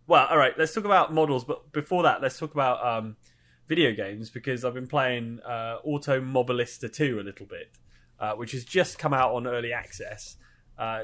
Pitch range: 110-150 Hz